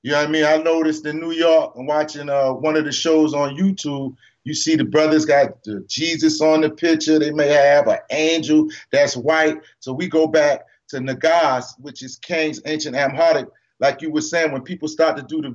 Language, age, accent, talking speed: English, 40-59, American, 220 wpm